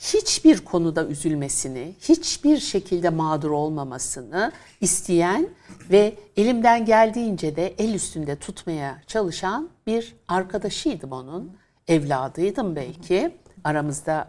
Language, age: Turkish, 60-79